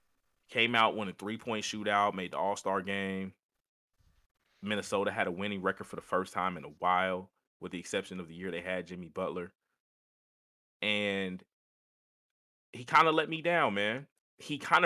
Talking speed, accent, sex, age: 170 wpm, American, male, 30-49